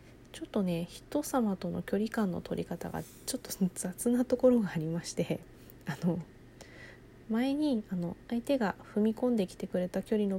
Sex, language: female, Japanese